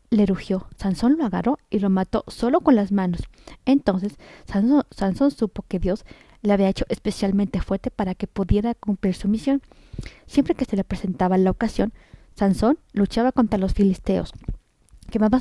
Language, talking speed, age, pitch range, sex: Spanish, 165 wpm, 30-49, 195-245 Hz, female